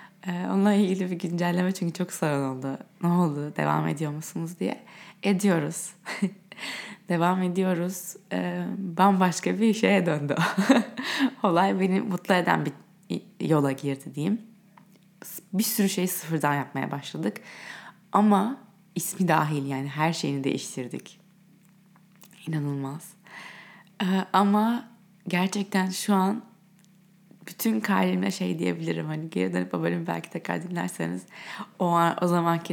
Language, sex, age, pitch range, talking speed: Turkish, female, 20-39, 160-195 Hz, 115 wpm